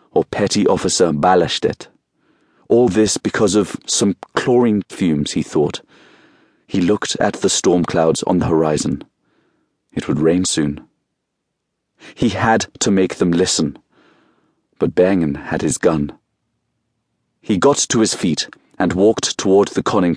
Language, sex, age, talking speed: English, male, 40-59, 140 wpm